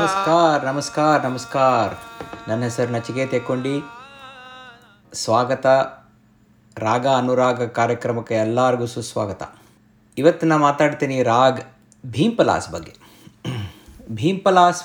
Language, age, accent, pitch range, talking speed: Kannada, 50-69, native, 110-160 Hz, 80 wpm